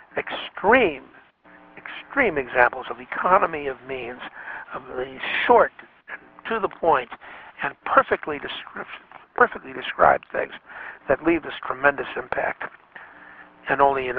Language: English